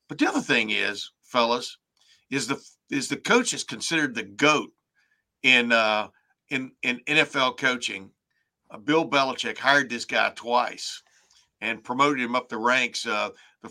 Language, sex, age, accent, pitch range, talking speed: English, male, 60-79, American, 115-140 Hz, 160 wpm